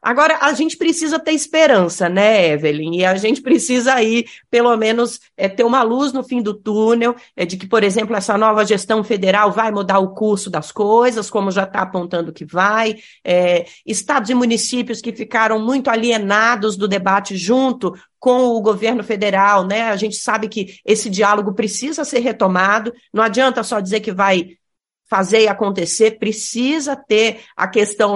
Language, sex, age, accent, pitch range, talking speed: Portuguese, female, 40-59, Brazilian, 210-270 Hz, 170 wpm